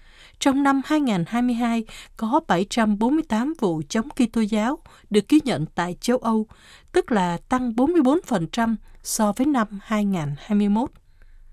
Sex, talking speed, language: female, 120 wpm, Vietnamese